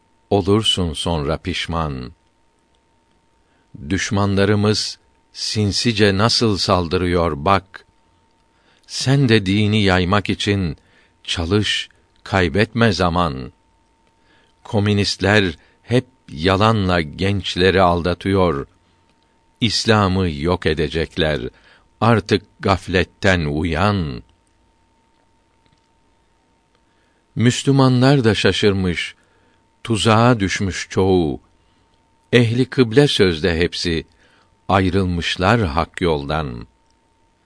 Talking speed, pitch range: 60 wpm, 85-100 Hz